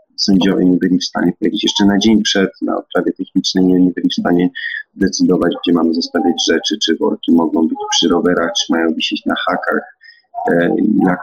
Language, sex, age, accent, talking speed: Polish, male, 40-59, native, 180 wpm